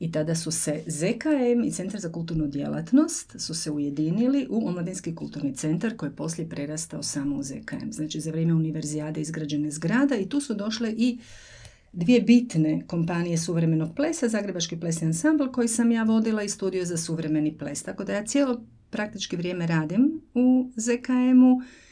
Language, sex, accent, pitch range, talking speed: Croatian, female, native, 165-235 Hz, 165 wpm